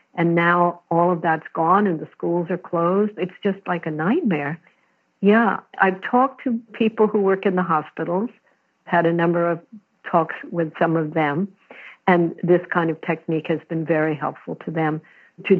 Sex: female